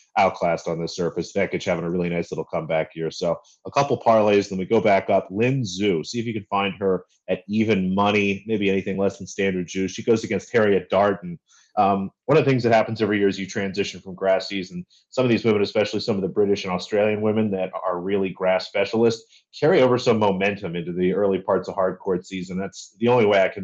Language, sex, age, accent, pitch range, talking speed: English, male, 30-49, American, 90-110 Hz, 235 wpm